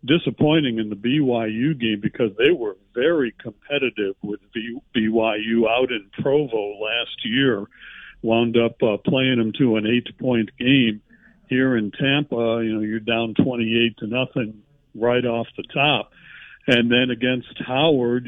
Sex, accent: male, American